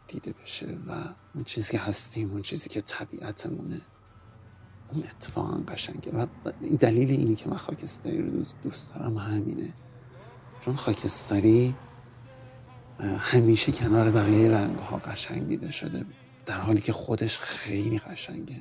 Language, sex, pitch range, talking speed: Persian, male, 105-125 Hz, 130 wpm